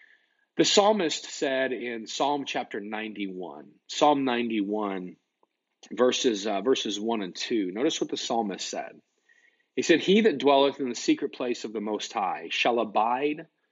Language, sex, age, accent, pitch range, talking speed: English, male, 40-59, American, 105-140 Hz, 155 wpm